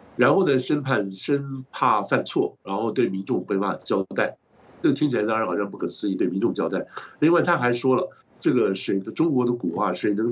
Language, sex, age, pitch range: Chinese, male, 60-79, 100-130 Hz